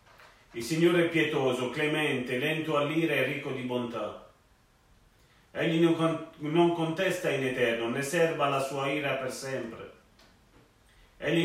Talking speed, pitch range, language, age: 125 wpm, 135-165 Hz, French, 40-59